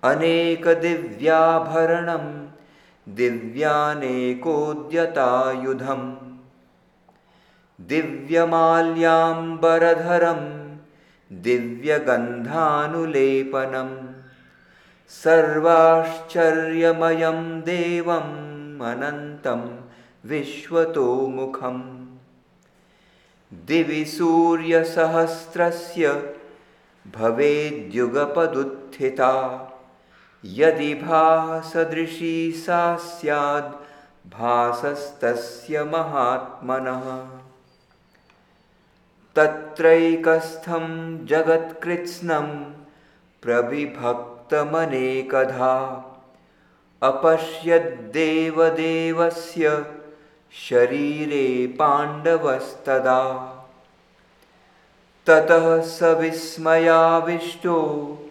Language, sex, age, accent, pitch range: Hindi, male, 50-69, native, 130-165 Hz